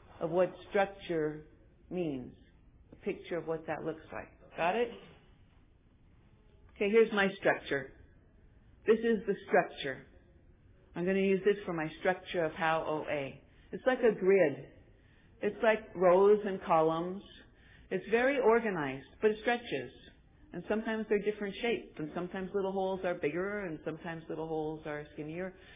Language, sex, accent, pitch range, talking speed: English, female, American, 165-200 Hz, 150 wpm